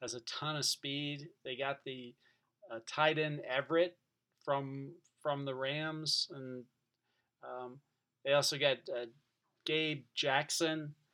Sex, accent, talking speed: male, American, 130 wpm